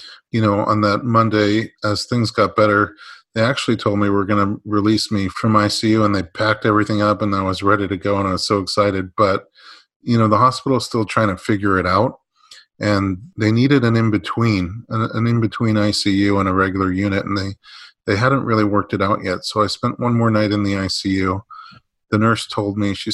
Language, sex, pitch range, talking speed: English, male, 95-110 Hz, 210 wpm